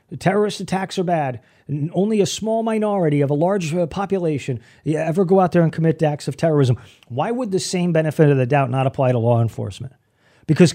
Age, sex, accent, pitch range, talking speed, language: 40-59, male, American, 125-175 Hz, 205 wpm, English